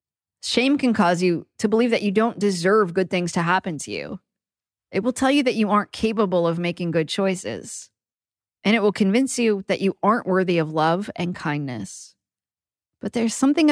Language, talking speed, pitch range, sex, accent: English, 195 wpm, 175-225 Hz, female, American